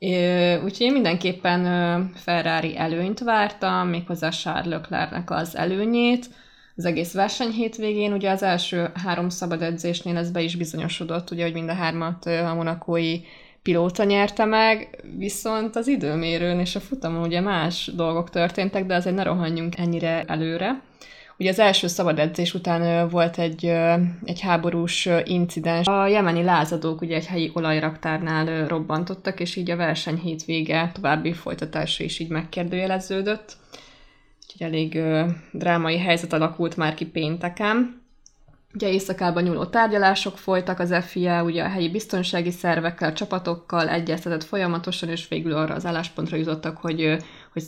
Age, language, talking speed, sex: 20-39, Hungarian, 135 wpm, female